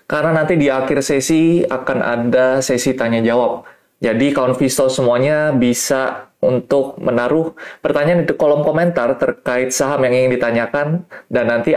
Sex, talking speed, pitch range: male, 140 wpm, 120-145 Hz